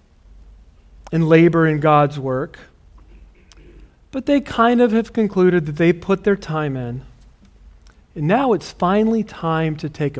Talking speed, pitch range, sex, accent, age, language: 140 wpm, 125-190 Hz, male, American, 40-59, English